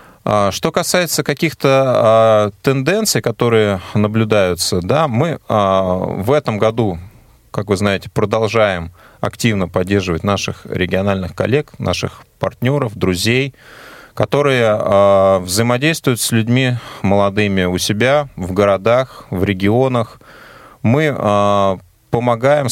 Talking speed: 90 wpm